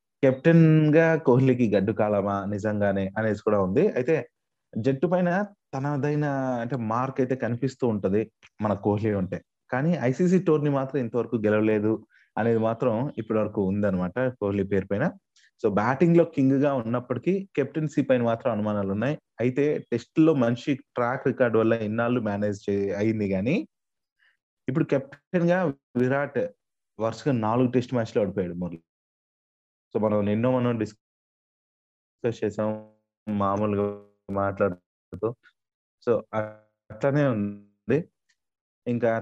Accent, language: native, Telugu